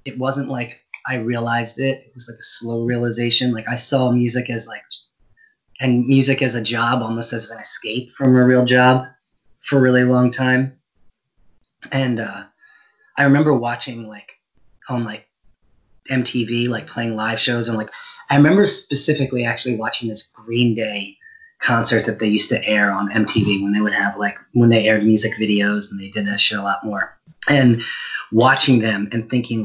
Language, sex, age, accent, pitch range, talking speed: English, male, 30-49, American, 110-125 Hz, 180 wpm